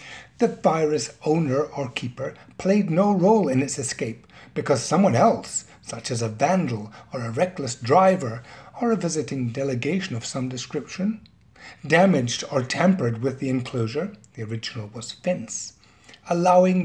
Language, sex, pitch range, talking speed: English, male, 120-175 Hz, 145 wpm